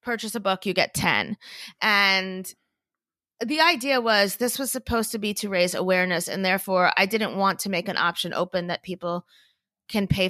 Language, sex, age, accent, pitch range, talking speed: English, female, 20-39, American, 180-230 Hz, 185 wpm